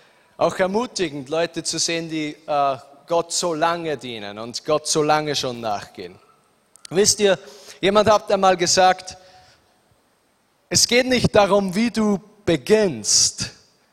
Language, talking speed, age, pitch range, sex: German, 125 wpm, 30-49, 175-235 Hz, male